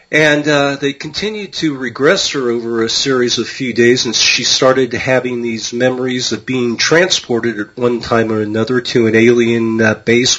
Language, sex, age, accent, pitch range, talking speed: English, male, 40-59, American, 110-125 Hz, 185 wpm